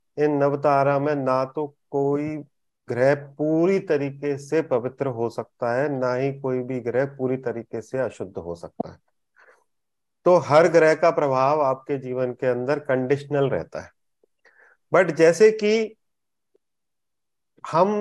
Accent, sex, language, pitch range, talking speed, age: native, male, Hindi, 140-185 Hz, 140 wpm, 30-49